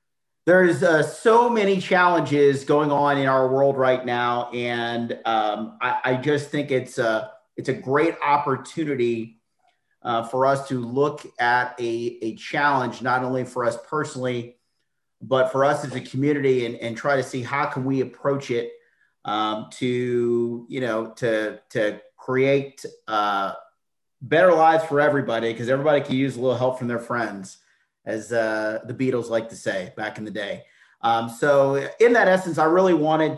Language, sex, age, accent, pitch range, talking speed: English, male, 40-59, American, 120-145 Hz, 170 wpm